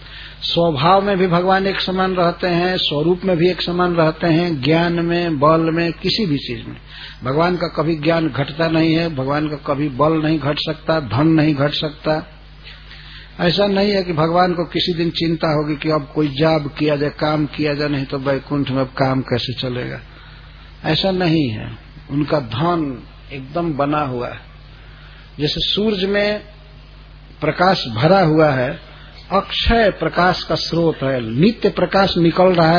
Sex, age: male, 60-79